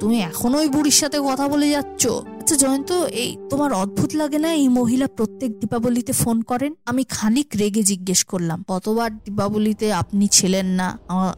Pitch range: 185-275 Hz